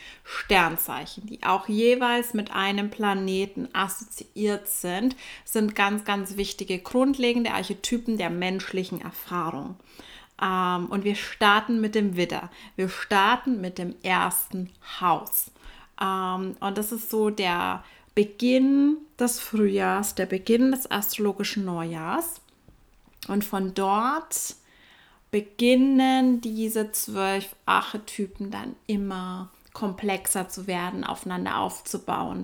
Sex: female